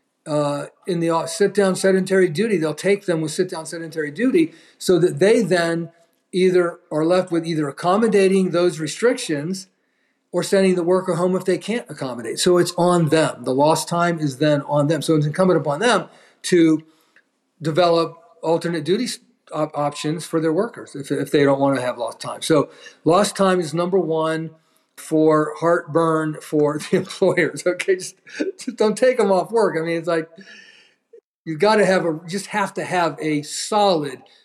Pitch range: 155-185 Hz